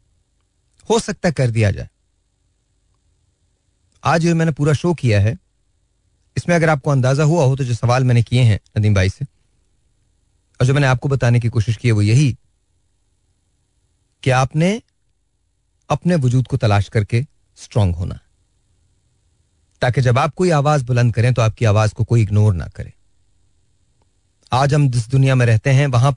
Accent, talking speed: native, 160 wpm